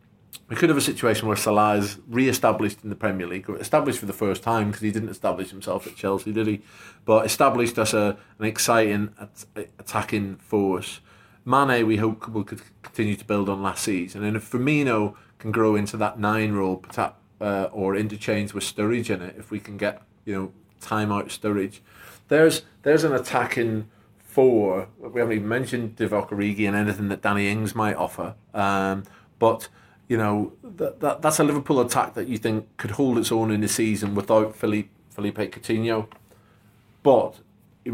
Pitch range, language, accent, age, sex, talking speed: 100-115 Hz, English, British, 30-49, male, 185 wpm